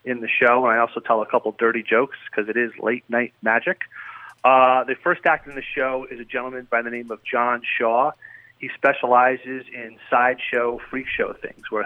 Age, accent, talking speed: 40-59, American, 205 wpm